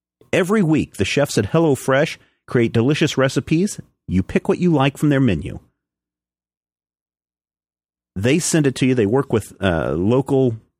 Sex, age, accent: male, 40-59, American